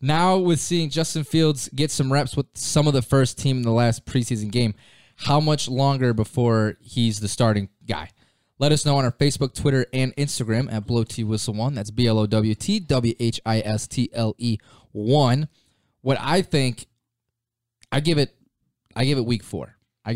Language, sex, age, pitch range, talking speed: English, male, 20-39, 110-140 Hz, 175 wpm